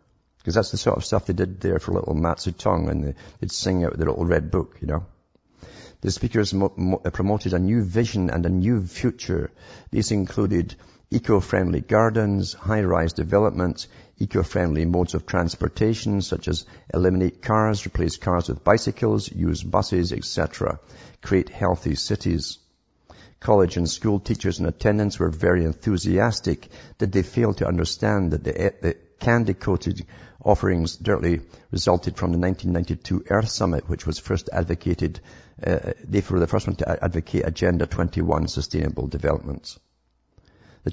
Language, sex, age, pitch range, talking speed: English, male, 50-69, 85-100 Hz, 150 wpm